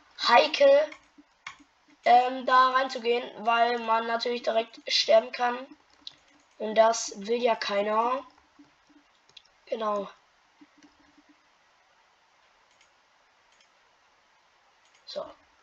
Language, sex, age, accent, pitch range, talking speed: German, female, 20-39, German, 220-295 Hz, 65 wpm